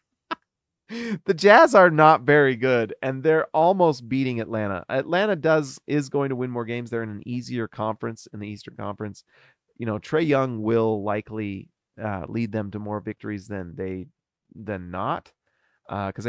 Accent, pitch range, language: American, 105-145 Hz, English